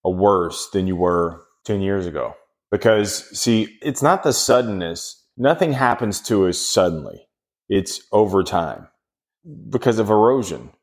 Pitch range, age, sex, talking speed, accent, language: 100-120 Hz, 30-49, male, 135 wpm, American, English